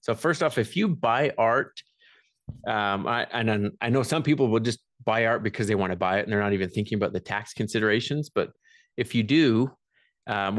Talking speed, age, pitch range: 215 wpm, 30-49, 105-125 Hz